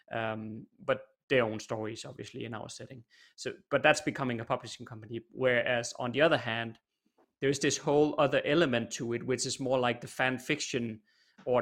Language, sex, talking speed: English, male, 190 wpm